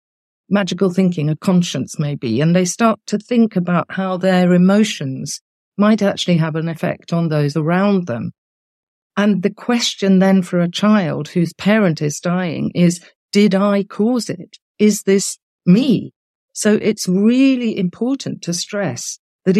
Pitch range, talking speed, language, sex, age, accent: 155-210 Hz, 150 wpm, English, female, 50-69, British